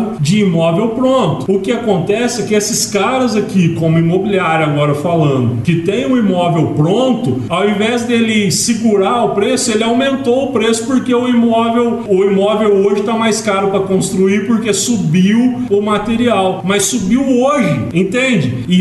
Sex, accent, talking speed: male, Brazilian, 155 wpm